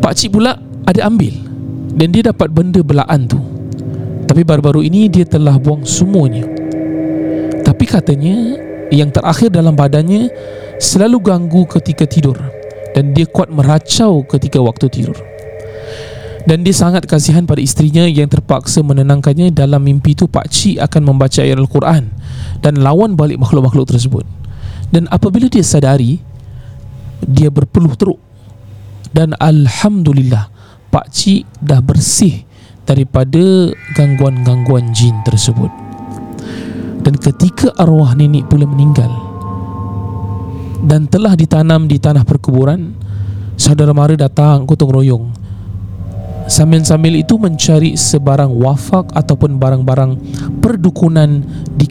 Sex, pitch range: male, 125-160 Hz